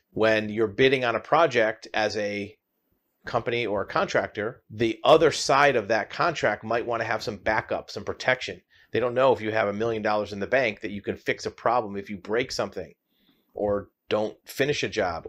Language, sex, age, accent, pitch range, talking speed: English, male, 40-59, American, 105-115 Hz, 210 wpm